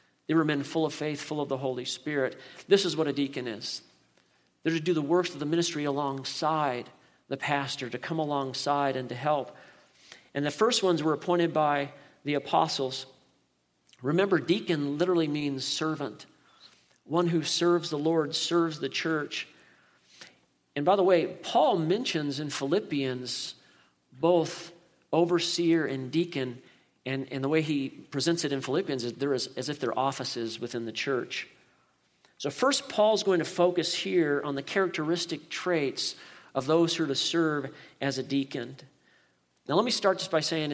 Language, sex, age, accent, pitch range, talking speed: English, male, 50-69, American, 135-170 Hz, 170 wpm